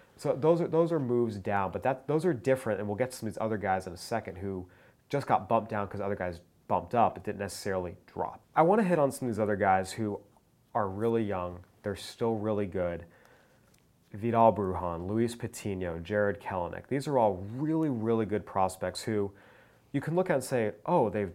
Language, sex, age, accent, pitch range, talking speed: English, male, 30-49, American, 95-115 Hz, 220 wpm